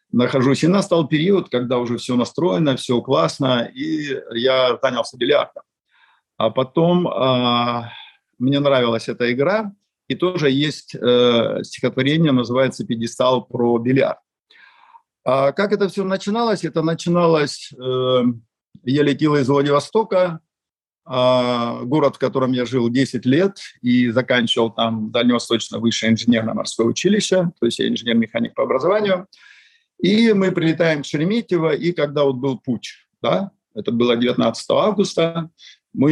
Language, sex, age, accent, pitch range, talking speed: Russian, male, 50-69, native, 125-165 Hz, 130 wpm